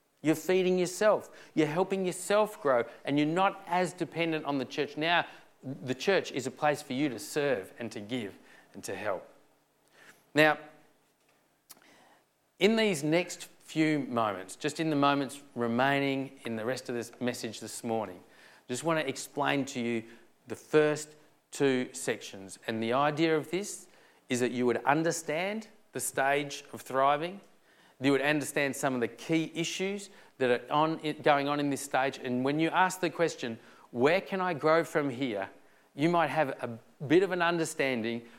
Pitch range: 120-160 Hz